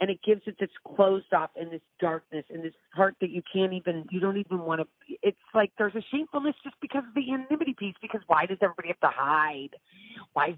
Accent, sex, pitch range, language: American, female, 155-215 Hz, English